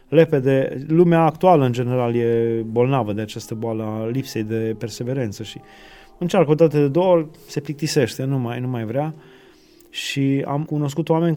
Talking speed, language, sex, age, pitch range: 160 wpm, Romanian, male, 20-39, 130-165 Hz